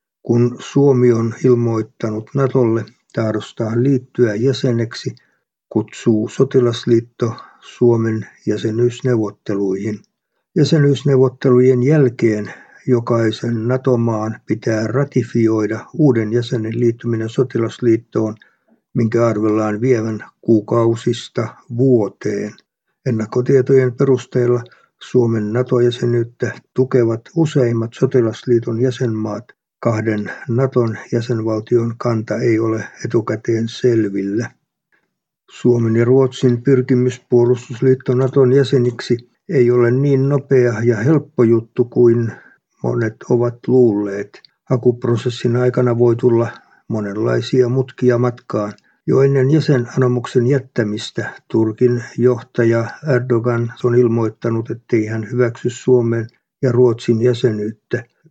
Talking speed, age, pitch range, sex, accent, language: 85 wpm, 50-69, 115-125 Hz, male, native, Finnish